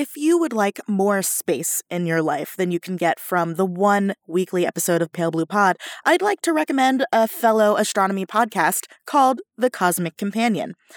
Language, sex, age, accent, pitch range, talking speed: English, female, 20-39, American, 180-240 Hz, 185 wpm